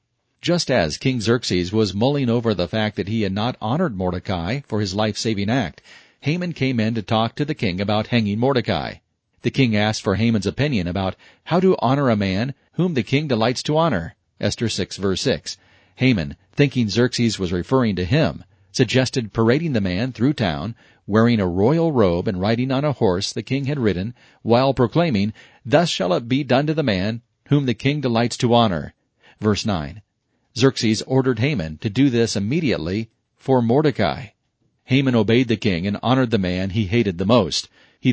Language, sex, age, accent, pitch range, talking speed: English, male, 40-59, American, 105-130 Hz, 185 wpm